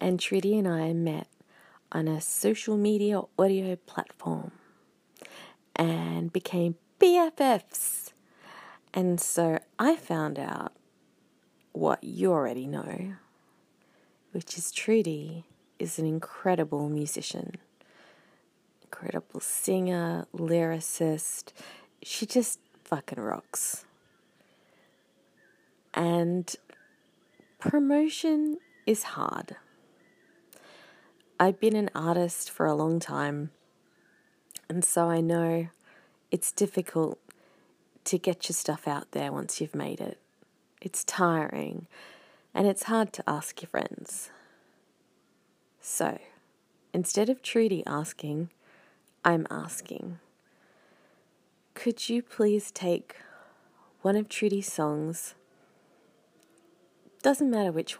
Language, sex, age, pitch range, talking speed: English, female, 40-59, 160-210 Hz, 95 wpm